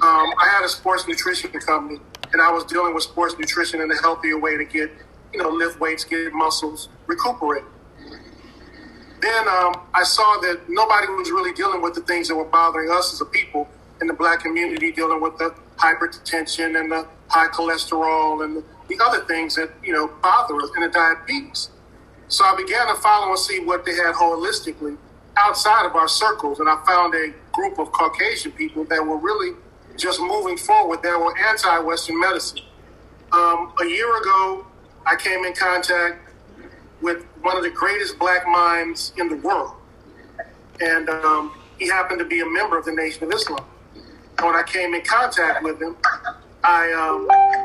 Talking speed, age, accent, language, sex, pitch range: 180 wpm, 40-59, American, English, male, 165-215 Hz